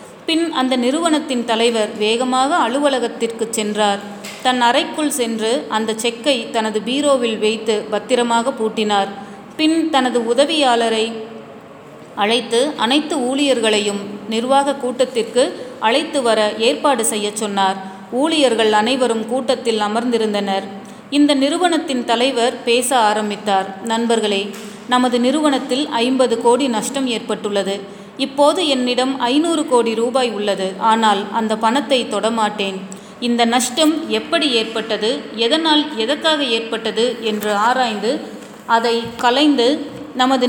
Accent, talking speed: native, 100 wpm